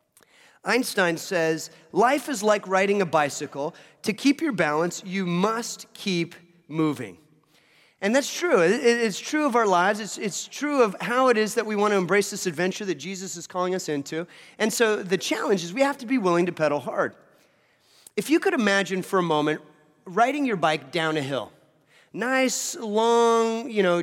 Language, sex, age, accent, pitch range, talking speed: English, male, 30-49, American, 175-230 Hz, 180 wpm